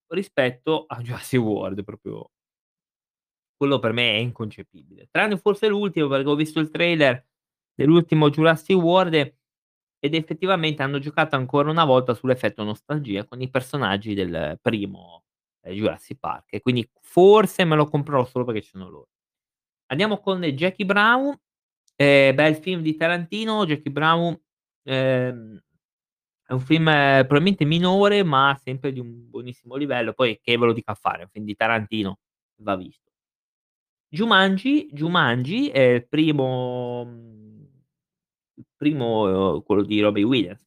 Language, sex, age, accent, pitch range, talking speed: Italian, male, 20-39, native, 120-160 Hz, 140 wpm